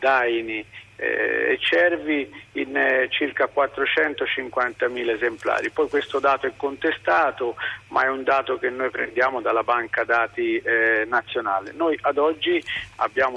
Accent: native